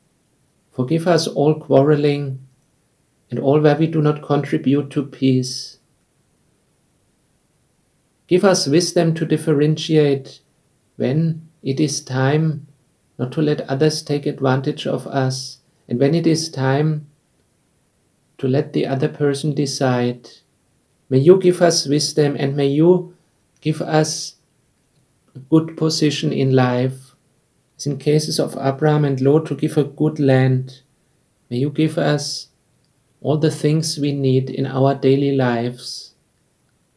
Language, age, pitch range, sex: English, 50-69, 130-155 Hz, male